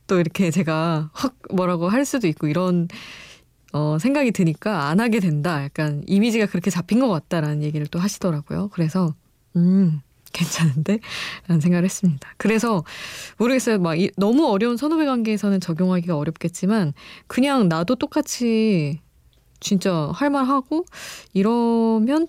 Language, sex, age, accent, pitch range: Korean, female, 20-39, native, 160-215 Hz